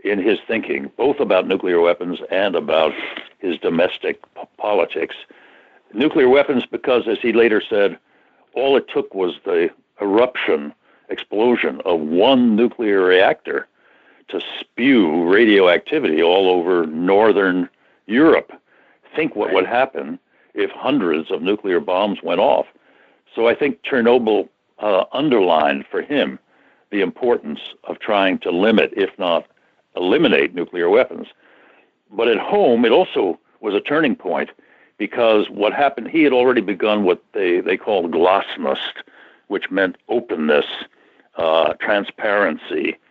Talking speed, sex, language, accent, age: 130 wpm, male, English, American, 60-79